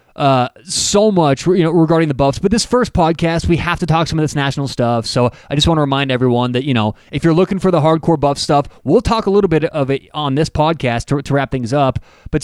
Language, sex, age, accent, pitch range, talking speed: English, male, 30-49, American, 130-170 Hz, 265 wpm